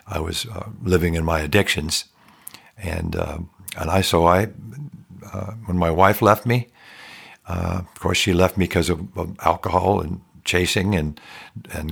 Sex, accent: male, American